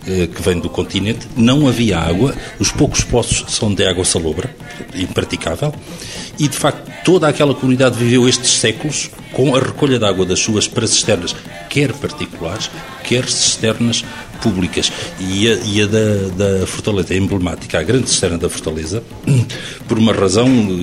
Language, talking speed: Portuguese, 160 wpm